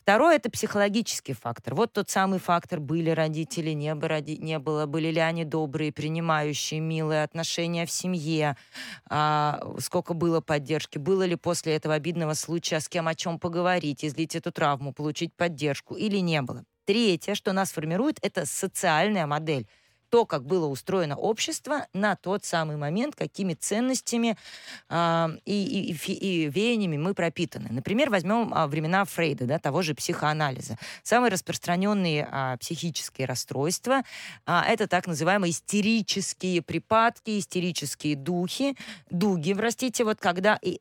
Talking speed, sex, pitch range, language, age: 135 wpm, female, 155-200 Hz, Russian, 20-39